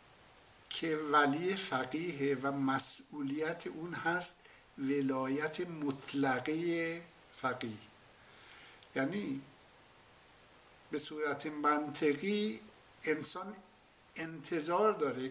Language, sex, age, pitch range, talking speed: English, male, 60-79, 140-170 Hz, 65 wpm